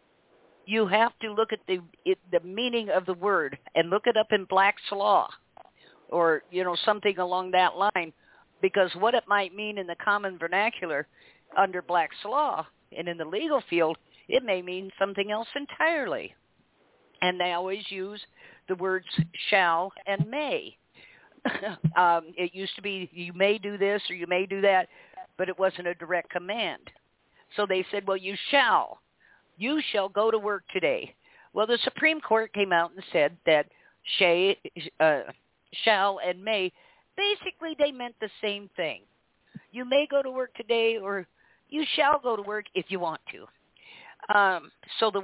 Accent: American